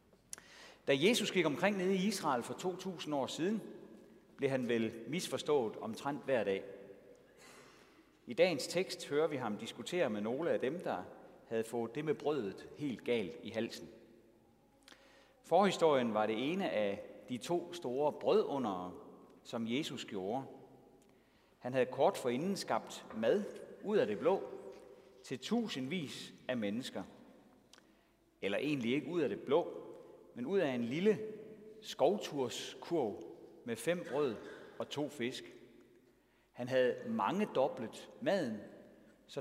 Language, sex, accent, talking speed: Danish, male, native, 135 wpm